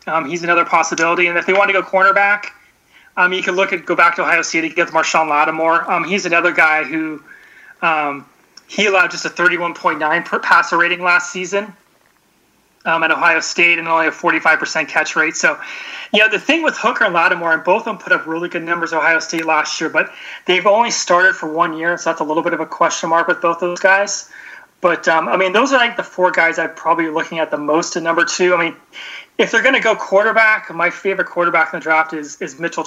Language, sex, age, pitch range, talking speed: English, male, 30-49, 160-190 Hz, 235 wpm